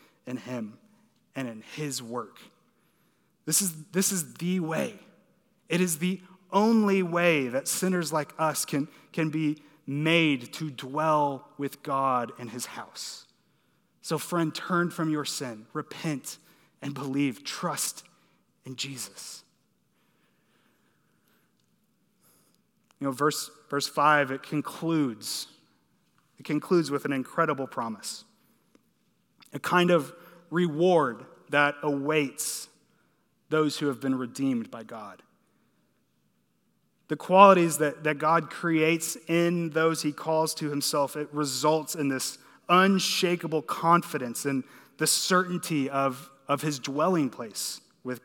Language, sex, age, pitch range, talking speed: English, male, 30-49, 140-175 Hz, 120 wpm